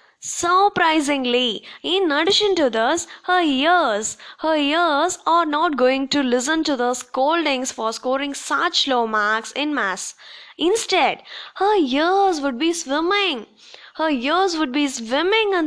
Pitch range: 260-335 Hz